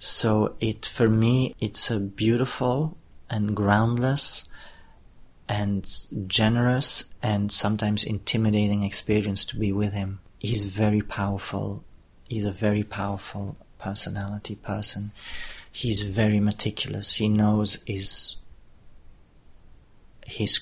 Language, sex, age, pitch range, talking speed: Swedish, male, 30-49, 100-110 Hz, 100 wpm